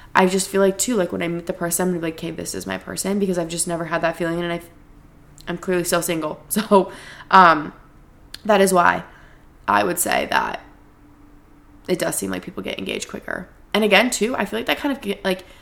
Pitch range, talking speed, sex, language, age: 170-195 Hz, 235 wpm, female, English, 20-39